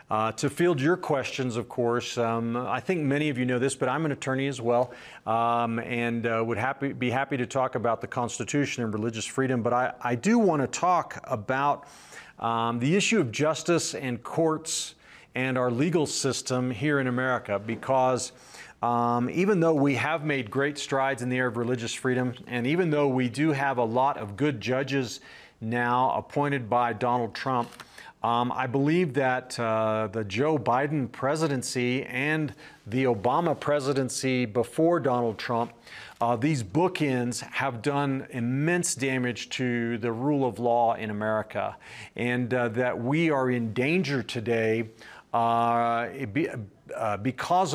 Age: 40-59